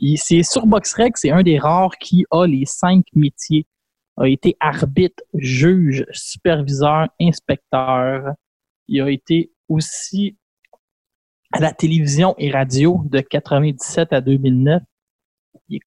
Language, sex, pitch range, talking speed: French, male, 140-185 Hz, 130 wpm